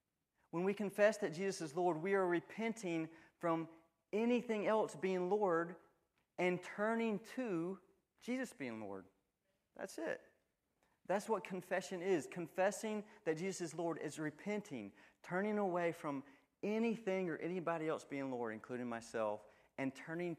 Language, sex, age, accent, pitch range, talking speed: English, male, 40-59, American, 135-185 Hz, 140 wpm